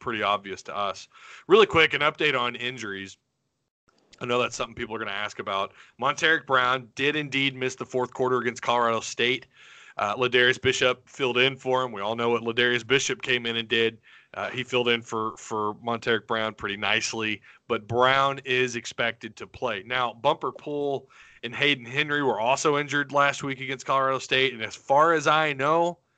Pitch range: 115-140 Hz